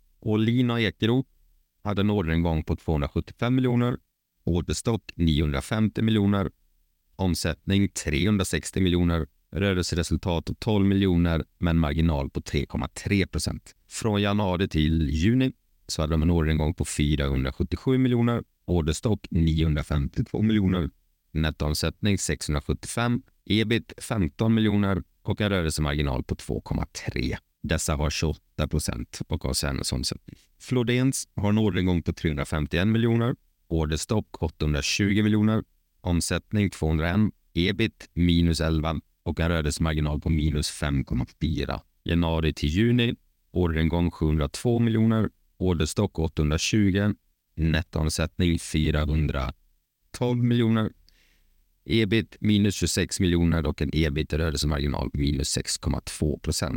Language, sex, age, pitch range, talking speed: Swedish, male, 30-49, 80-105 Hz, 105 wpm